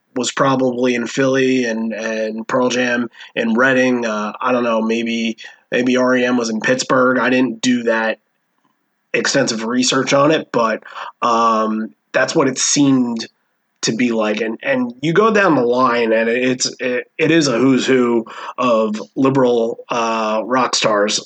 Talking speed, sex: 160 wpm, male